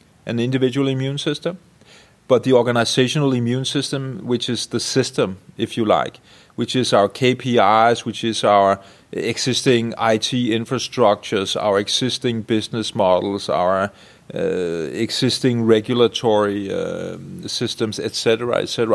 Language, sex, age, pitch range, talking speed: Swedish, male, 30-49, 110-130 Hz, 120 wpm